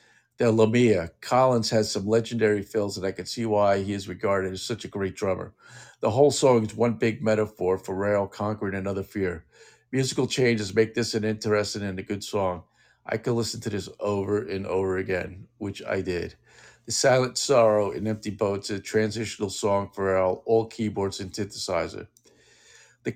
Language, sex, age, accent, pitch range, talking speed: English, male, 50-69, American, 95-115 Hz, 180 wpm